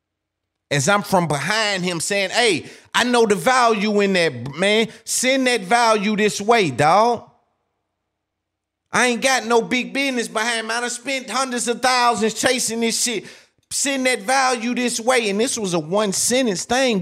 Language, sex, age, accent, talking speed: English, male, 30-49, American, 175 wpm